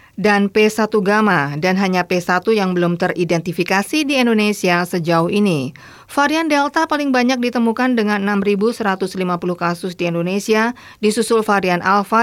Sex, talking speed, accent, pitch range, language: female, 130 wpm, native, 175-220 Hz, Indonesian